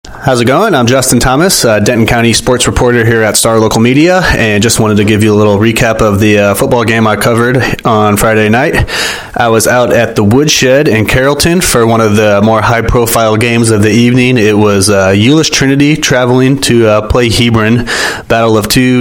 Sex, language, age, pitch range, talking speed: male, English, 30-49, 105-125 Hz, 210 wpm